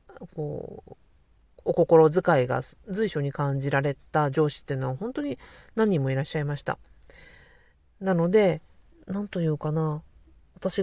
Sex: female